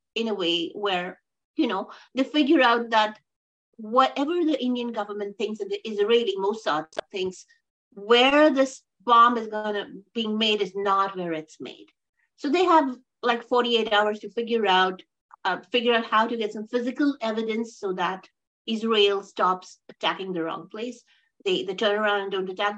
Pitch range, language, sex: 200-255 Hz, English, female